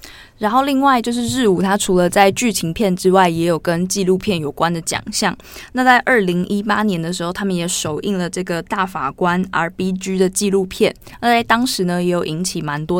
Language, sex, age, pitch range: Chinese, female, 20-39, 175-215 Hz